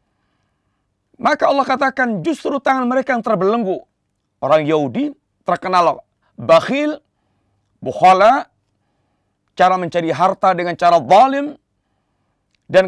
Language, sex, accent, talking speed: Indonesian, male, native, 95 wpm